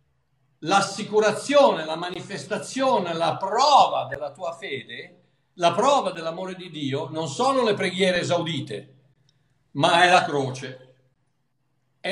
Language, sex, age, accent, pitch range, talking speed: Italian, male, 60-79, native, 160-230 Hz, 115 wpm